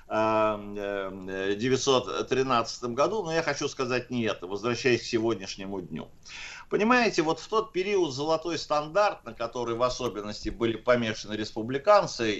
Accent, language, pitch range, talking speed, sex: native, Russian, 110-150 Hz, 130 wpm, male